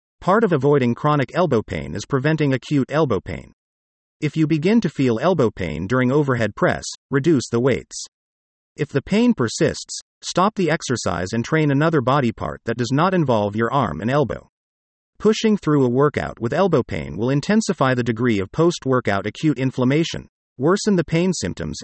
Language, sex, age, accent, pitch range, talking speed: English, male, 40-59, American, 115-165 Hz, 175 wpm